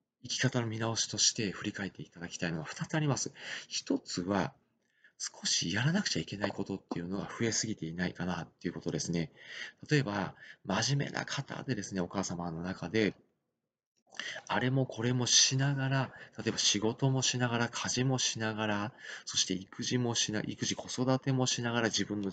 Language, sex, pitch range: Japanese, male, 95-145 Hz